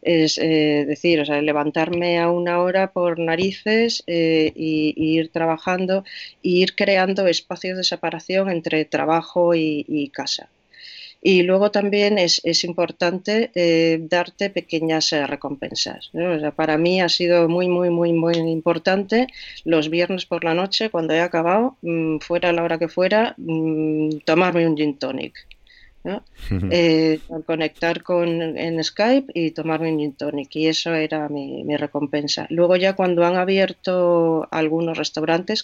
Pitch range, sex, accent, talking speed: 155-175 Hz, female, Spanish, 155 wpm